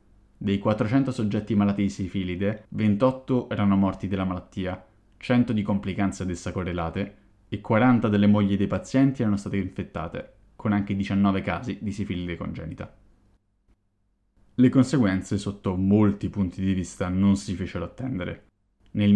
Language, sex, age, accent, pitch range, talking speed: Italian, male, 20-39, native, 95-105 Hz, 140 wpm